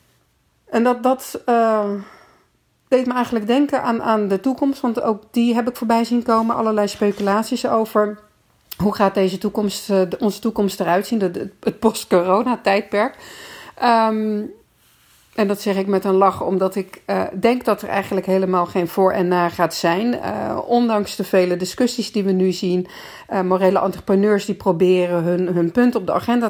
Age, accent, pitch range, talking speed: 40-59, Dutch, 180-215 Hz, 180 wpm